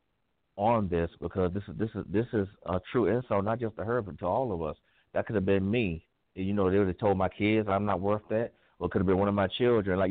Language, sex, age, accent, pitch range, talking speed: English, male, 30-49, American, 95-115 Hz, 285 wpm